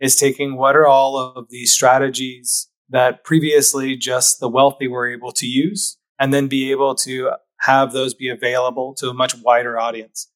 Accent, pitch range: American, 125-140 Hz